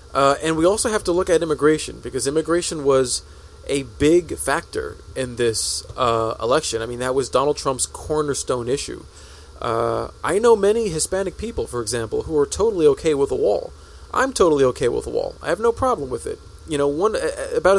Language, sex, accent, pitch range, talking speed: English, male, American, 130-190 Hz, 195 wpm